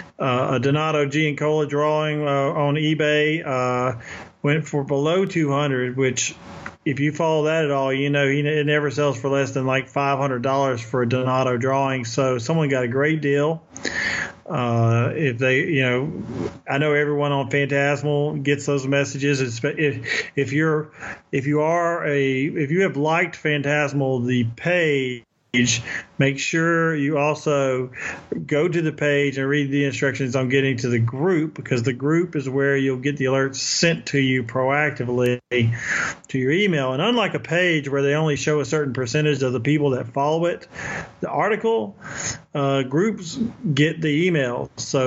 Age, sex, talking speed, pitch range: 40-59, male, 165 wpm, 130-155 Hz